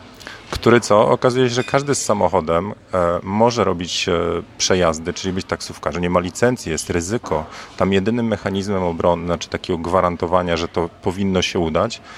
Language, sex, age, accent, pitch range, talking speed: Polish, male, 40-59, native, 85-105 Hz, 170 wpm